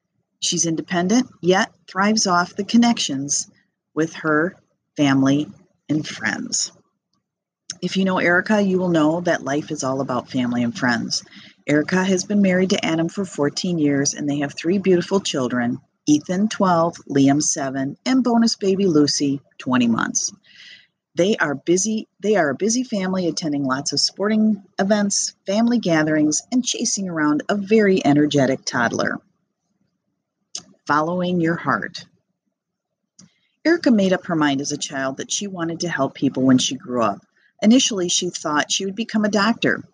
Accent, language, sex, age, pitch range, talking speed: American, English, female, 40-59, 150-205 Hz, 150 wpm